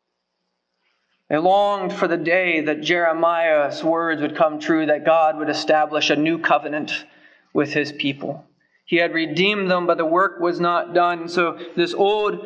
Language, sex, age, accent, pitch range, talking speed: English, male, 30-49, American, 155-195 Hz, 165 wpm